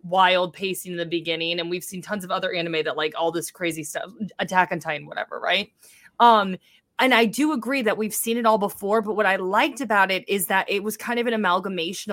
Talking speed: 240 wpm